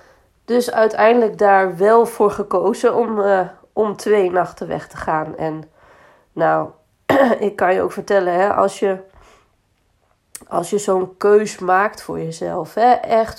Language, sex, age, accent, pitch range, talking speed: Dutch, female, 20-39, Dutch, 170-205 Hz, 130 wpm